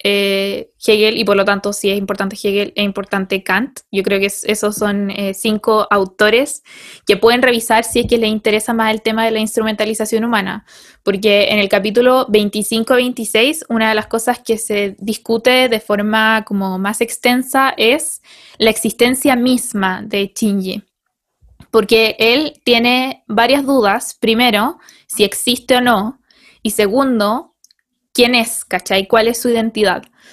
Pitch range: 210-250 Hz